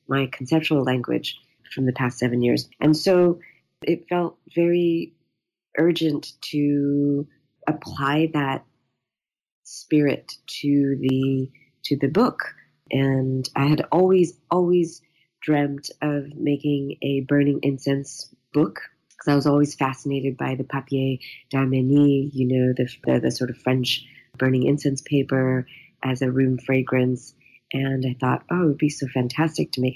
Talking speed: 140 wpm